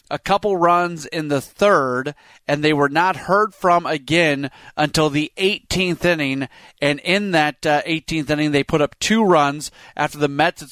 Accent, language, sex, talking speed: American, English, male, 180 wpm